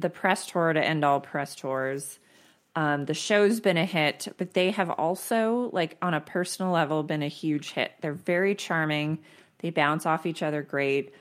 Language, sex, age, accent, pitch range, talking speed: English, female, 20-39, American, 150-185 Hz, 195 wpm